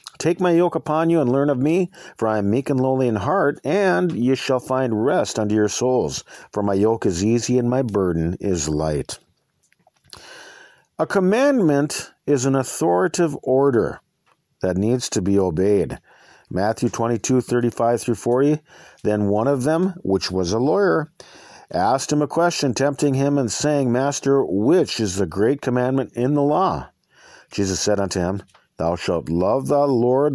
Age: 50-69